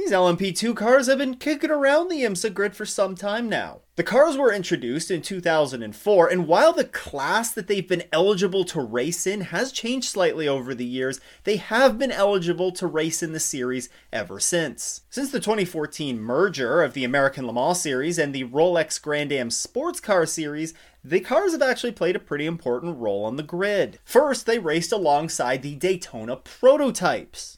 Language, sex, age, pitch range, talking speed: English, male, 30-49, 150-215 Hz, 185 wpm